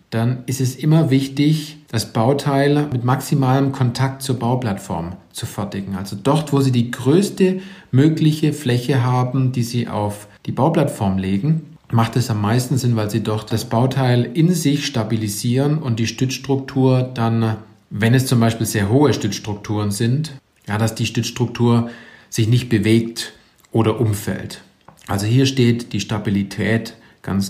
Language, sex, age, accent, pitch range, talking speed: German, male, 40-59, German, 110-135 Hz, 150 wpm